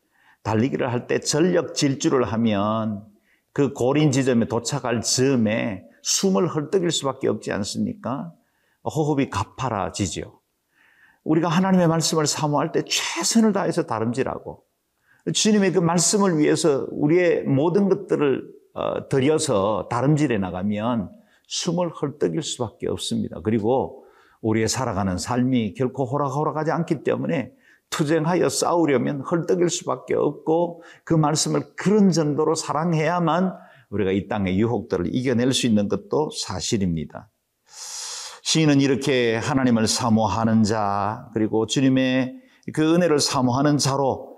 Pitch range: 115-170 Hz